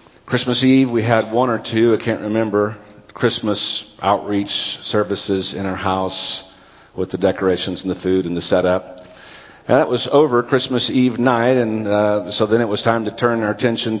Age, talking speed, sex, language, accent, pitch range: 50-69, 175 wpm, male, English, American, 95-115 Hz